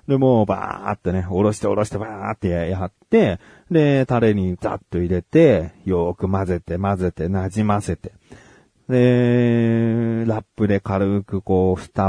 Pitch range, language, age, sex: 95-150 Hz, Japanese, 40-59, male